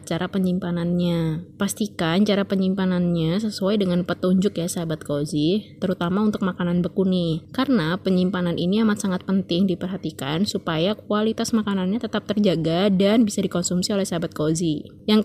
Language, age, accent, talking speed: Indonesian, 20-39, native, 135 wpm